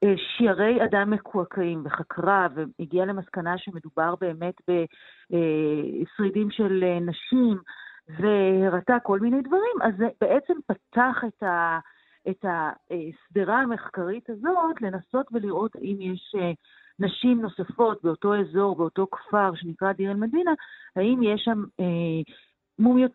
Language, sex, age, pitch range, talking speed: Hebrew, female, 40-59, 175-230 Hz, 105 wpm